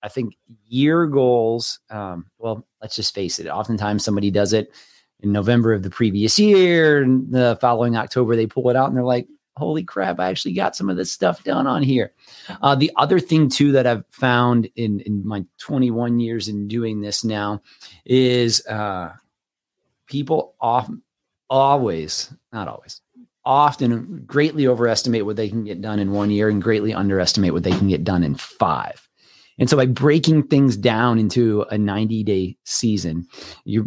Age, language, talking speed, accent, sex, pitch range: 30-49, English, 175 wpm, American, male, 105-125 Hz